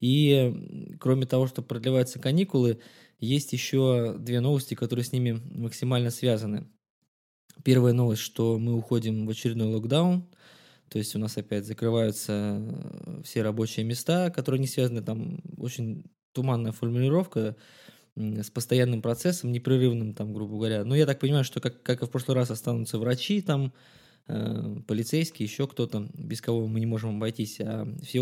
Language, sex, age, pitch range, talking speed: Russian, male, 20-39, 110-130 Hz, 150 wpm